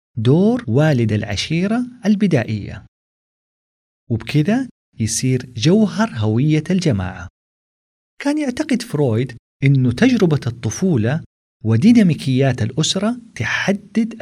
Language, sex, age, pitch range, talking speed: Arabic, male, 40-59, 115-185 Hz, 75 wpm